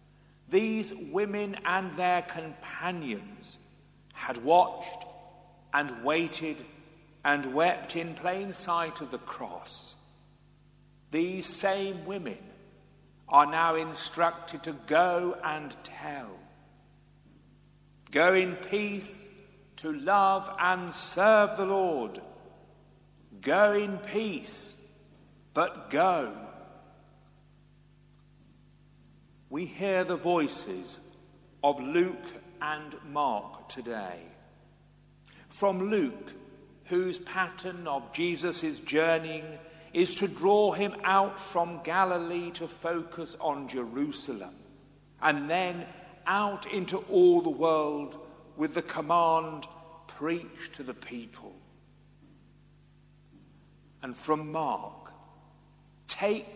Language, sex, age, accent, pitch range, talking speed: English, male, 50-69, British, 155-190 Hz, 90 wpm